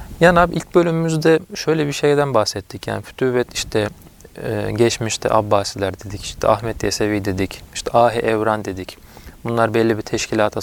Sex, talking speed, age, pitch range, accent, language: male, 145 wpm, 30-49, 100-120 Hz, native, Turkish